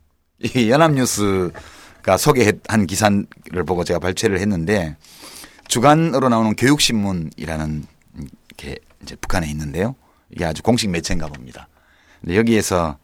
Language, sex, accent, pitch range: Korean, male, native, 80-110 Hz